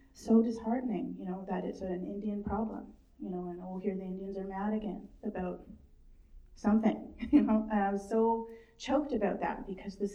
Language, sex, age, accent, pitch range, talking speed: English, female, 30-49, American, 180-210 Hz, 190 wpm